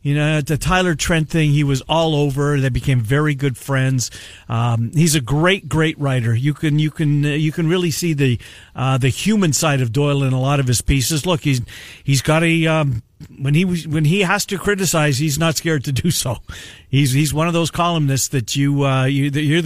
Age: 50-69